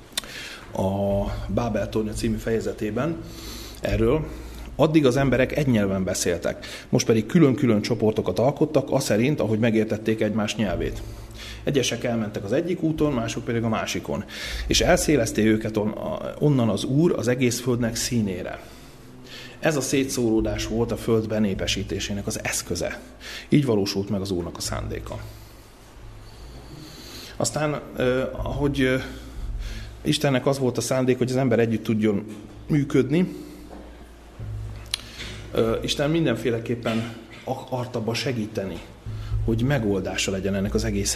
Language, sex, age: Hungarian, male, 30-49